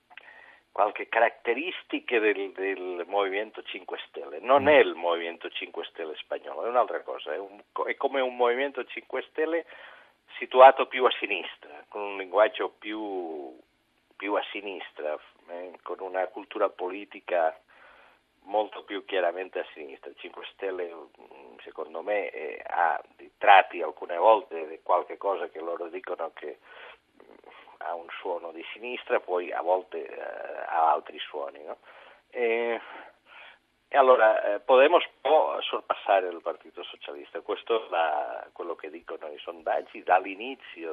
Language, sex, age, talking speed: Italian, male, 50-69, 135 wpm